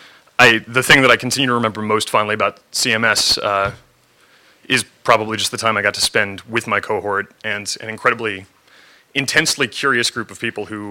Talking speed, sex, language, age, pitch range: 180 wpm, male, English, 30-49, 110-130 Hz